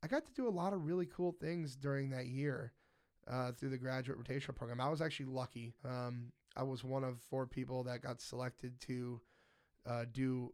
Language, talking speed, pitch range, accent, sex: English, 205 wpm, 125-140 Hz, American, male